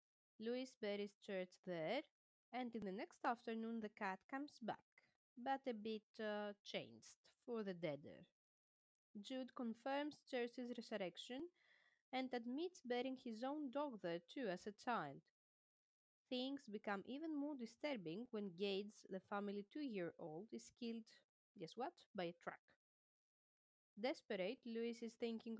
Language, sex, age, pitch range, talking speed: English, female, 20-39, 195-250 Hz, 135 wpm